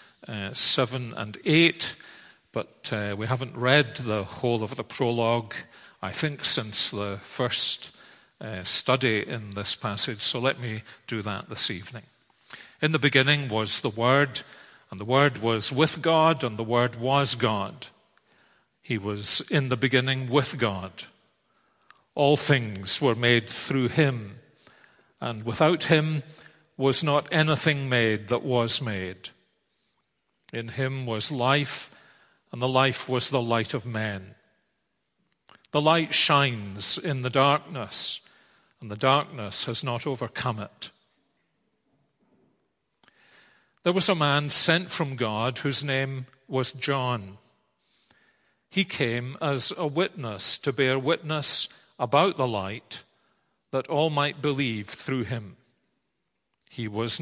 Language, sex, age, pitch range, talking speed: English, male, 50-69, 115-145 Hz, 130 wpm